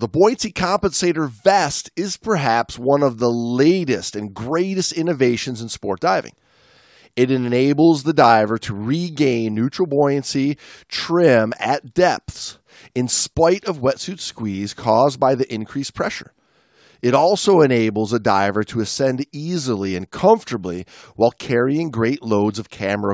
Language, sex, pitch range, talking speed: English, male, 115-165 Hz, 135 wpm